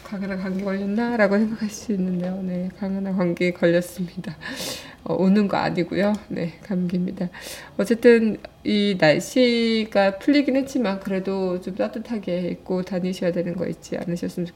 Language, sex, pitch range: Korean, female, 185-225 Hz